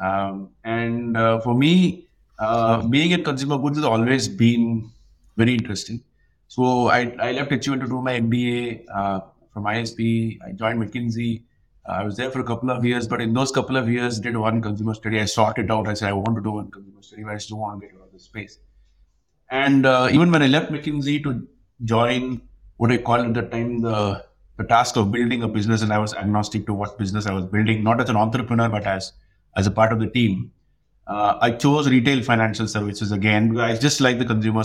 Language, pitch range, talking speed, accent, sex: English, 100-120 Hz, 220 wpm, Indian, male